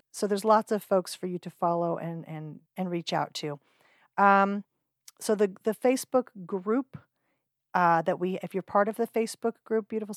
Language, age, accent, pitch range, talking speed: English, 40-59, American, 165-210 Hz, 190 wpm